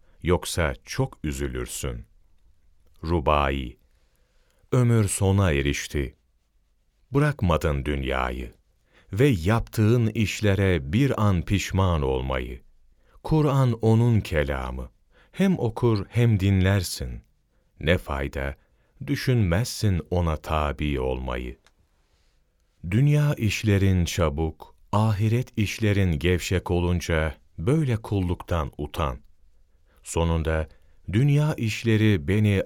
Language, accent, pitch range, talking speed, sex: Turkish, native, 75-110 Hz, 80 wpm, male